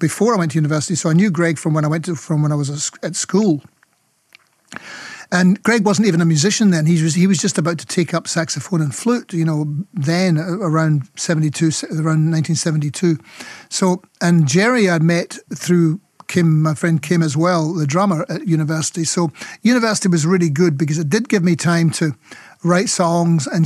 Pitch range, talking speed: 160-185 Hz, 200 wpm